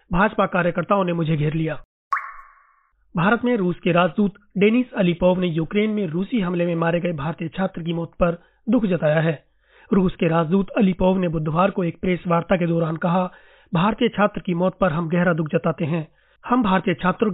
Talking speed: 190 wpm